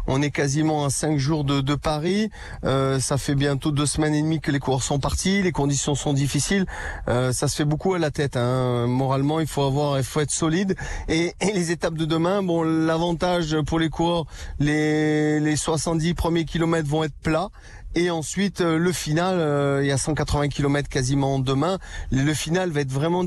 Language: French